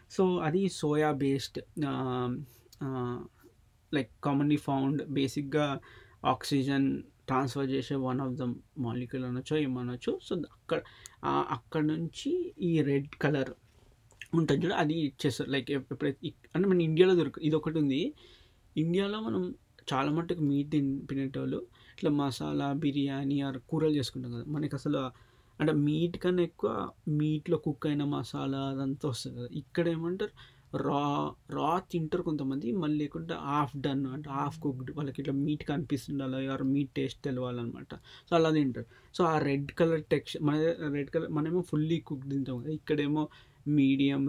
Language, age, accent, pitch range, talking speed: Telugu, 20-39, native, 135-155 Hz, 135 wpm